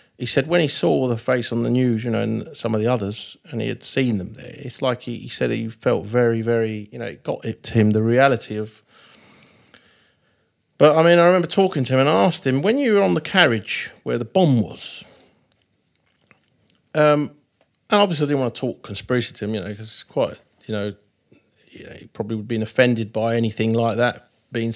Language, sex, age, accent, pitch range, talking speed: English, male, 40-59, British, 115-145 Hz, 230 wpm